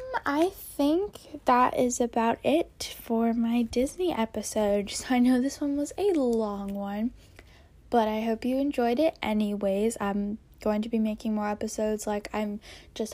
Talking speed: 160 wpm